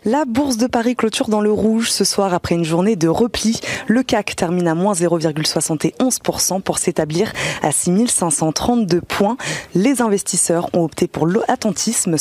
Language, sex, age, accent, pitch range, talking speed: French, female, 20-39, French, 155-215 Hz, 155 wpm